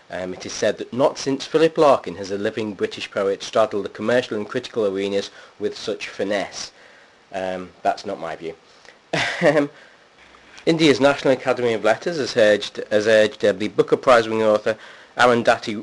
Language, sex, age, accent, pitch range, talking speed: English, male, 30-49, British, 95-120 Hz, 150 wpm